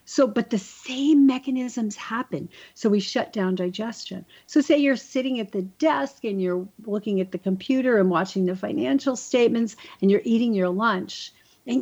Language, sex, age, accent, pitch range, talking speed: English, female, 50-69, American, 180-230 Hz, 180 wpm